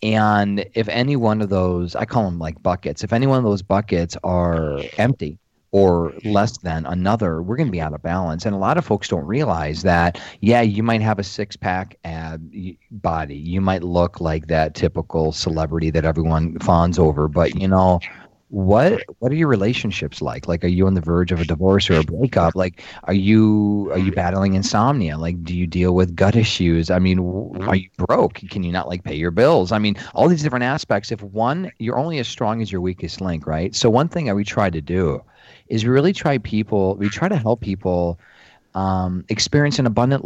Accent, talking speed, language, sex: American, 215 wpm, English, male